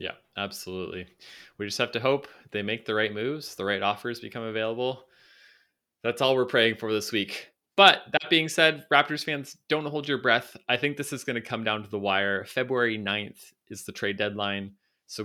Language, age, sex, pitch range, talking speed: English, 20-39, male, 105-130 Hz, 205 wpm